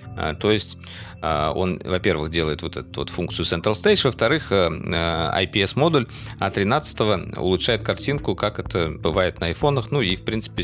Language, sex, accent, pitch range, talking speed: Russian, male, native, 90-120 Hz, 135 wpm